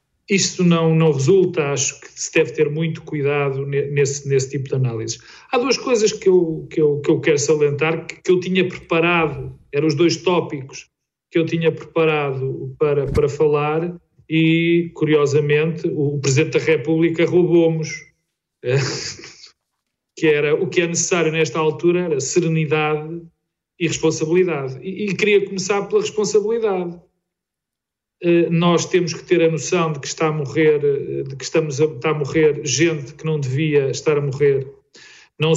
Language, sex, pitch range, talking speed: Portuguese, male, 145-170 Hz, 155 wpm